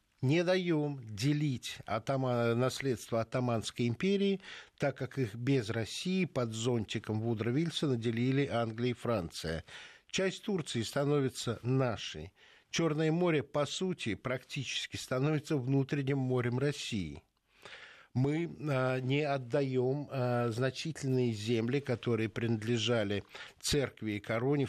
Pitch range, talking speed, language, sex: 115-140 Hz, 100 wpm, Russian, male